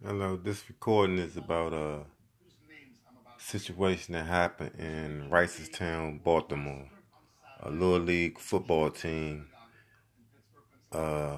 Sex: male